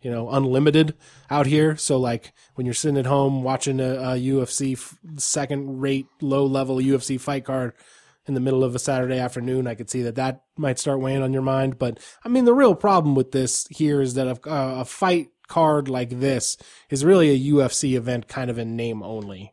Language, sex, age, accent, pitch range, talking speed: English, male, 20-39, American, 125-150 Hz, 210 wpm